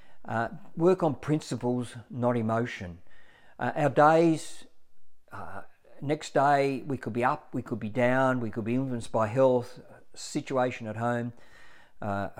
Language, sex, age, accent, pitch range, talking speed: English, male, 50-69, Australian, 105-125 Hz, 145 wpm